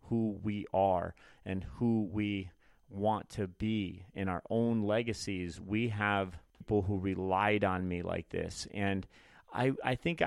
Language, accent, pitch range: English, American, 90-105 Hz